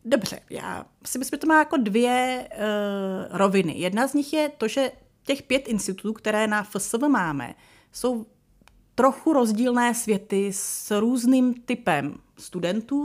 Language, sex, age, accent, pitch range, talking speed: Czech, female, 30-49, native, 205-255 Hz, 145 wpm